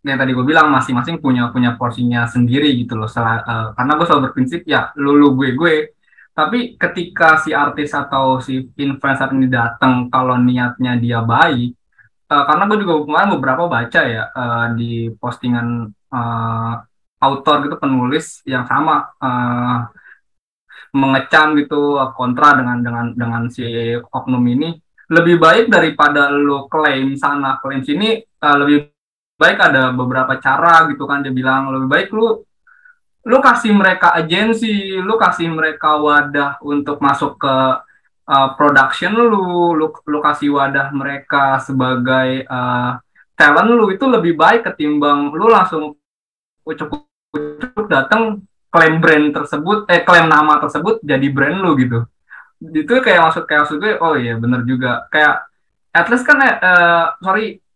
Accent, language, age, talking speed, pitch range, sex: native, Indonesian, 20-39, 150 wpm, 130-170 Hz, male